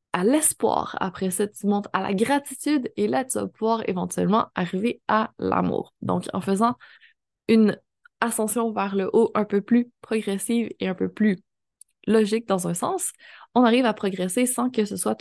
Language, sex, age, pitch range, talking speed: French, female, 20-39, 195-240 Hz, 180 wpm